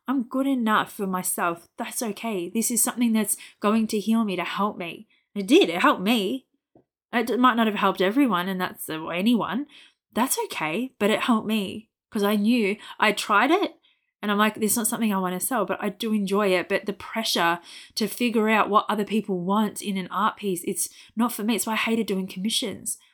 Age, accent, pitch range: 20-39, Australian, 195-240 Hz